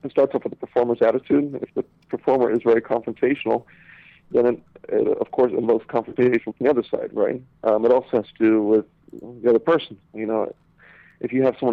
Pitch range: 110-130 Hz